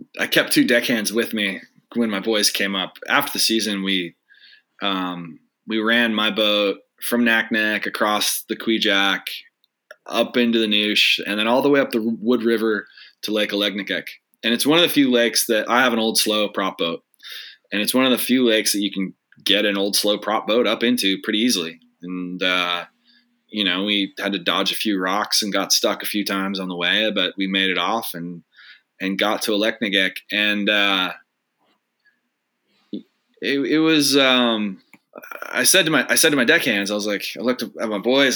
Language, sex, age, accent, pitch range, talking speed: English, male, 20-39, American, 100-120 Hz, 205 wpm